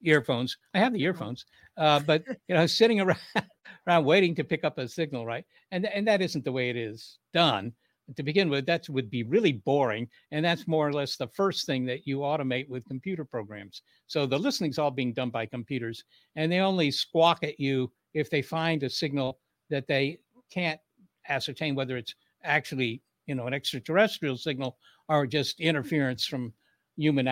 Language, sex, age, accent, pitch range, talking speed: English, male, 60-79, American, 130-175 Hz, 190 wpm